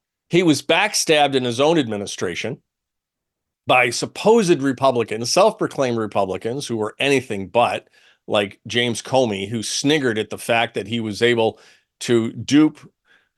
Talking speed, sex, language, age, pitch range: 135 wpm, male, English, 50-69, 110-155 Hz